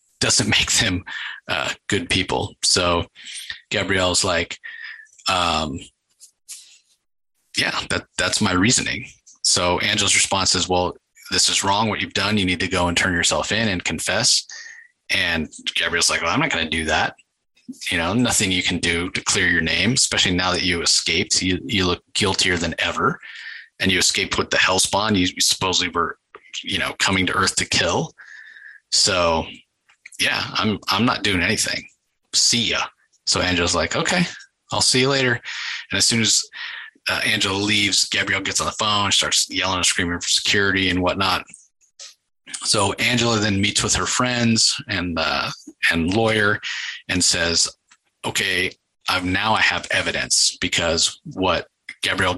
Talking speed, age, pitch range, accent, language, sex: 165 wpm, 30-49, 90-120 Hz, American, English, male